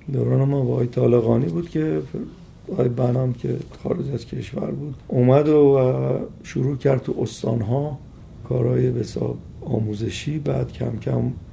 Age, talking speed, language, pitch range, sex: 50-69, 135 wpm, Persian, 110-140 Hz, male